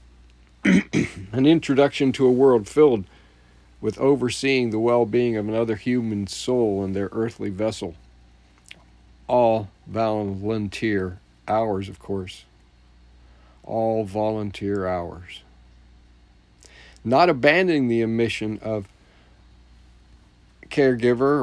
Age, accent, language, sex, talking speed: 50-69, American, English, male, 90 wpm